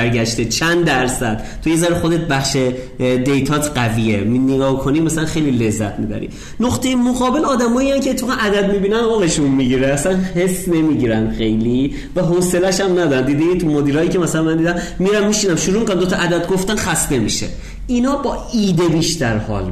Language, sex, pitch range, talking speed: Persian, male, 130-195 Hz, 165 wpm